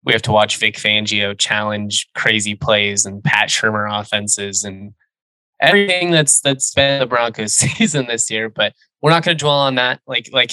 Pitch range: 110-135 Hz